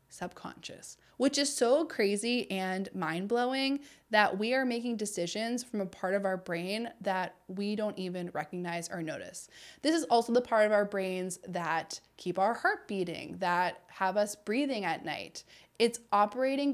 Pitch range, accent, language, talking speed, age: 185-240 Hz, American, English, 170 wpm, 20-39